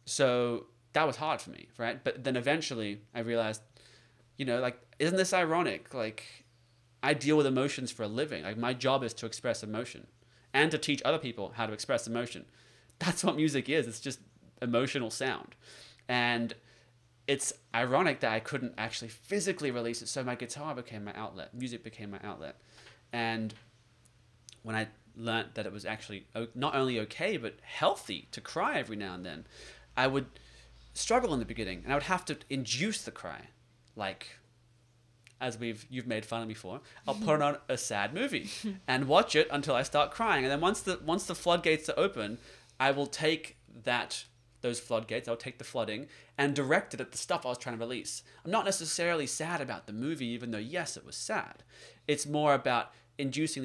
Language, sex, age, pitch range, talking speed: English, male, 20-39, 115-145 Hz, 190 wpm